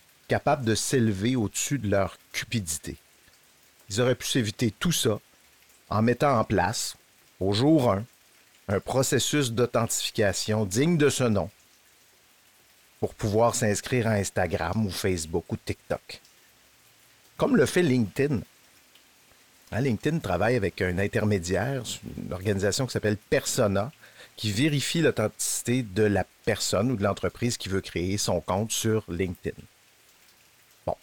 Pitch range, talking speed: 100-130 Hz, 130 wpm